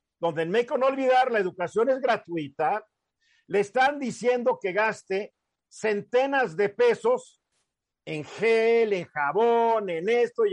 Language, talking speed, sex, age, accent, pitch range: Spanish, 135 wpm, male, 50-69, Mexican, 180-240 Hz